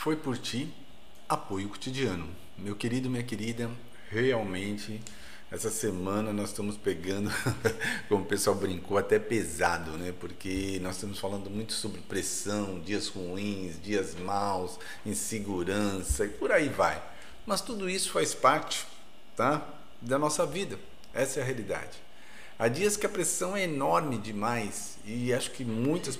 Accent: Brazilian